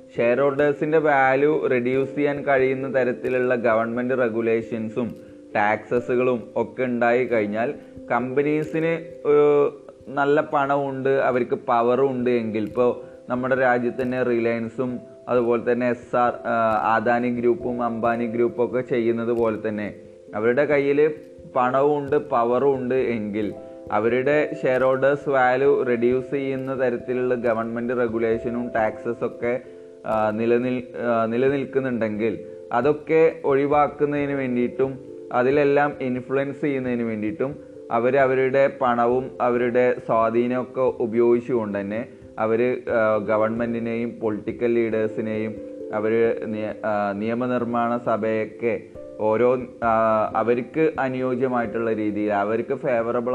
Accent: native